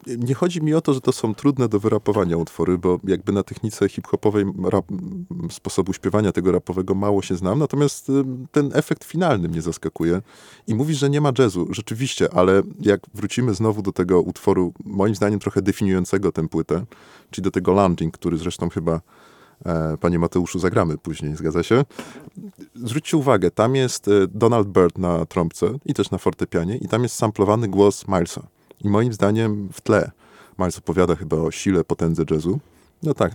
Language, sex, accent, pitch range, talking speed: Polish, male, native, 90-115 Hz, 170 wpm